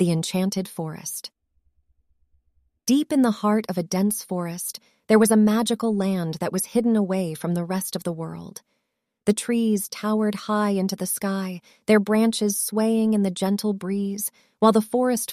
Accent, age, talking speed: American, 30-49, 170 wpm